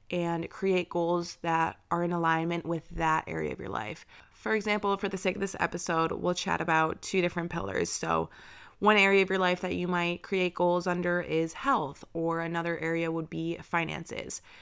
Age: 20-39